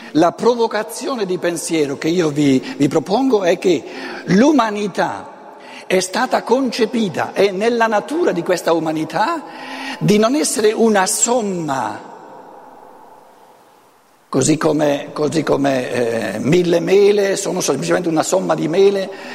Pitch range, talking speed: 175-230 Hz, 120 wpm